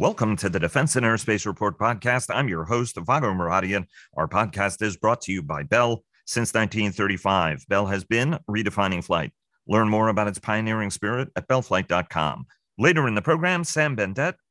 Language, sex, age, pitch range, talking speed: English, male, 40-59, 105-135 Hz, 175 wpm